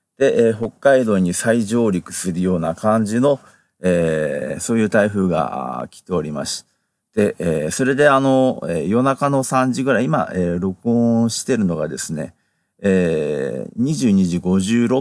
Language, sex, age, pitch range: Japanese, male, 40-59, 90-115 Hz